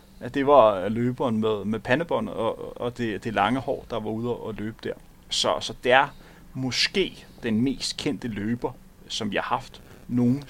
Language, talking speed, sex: Danish, 190 wpm, male